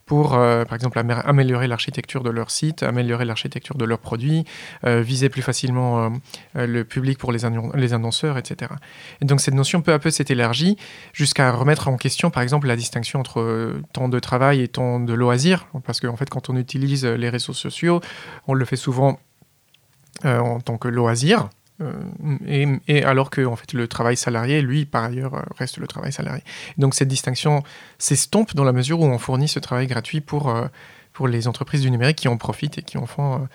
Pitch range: 125-150 Hz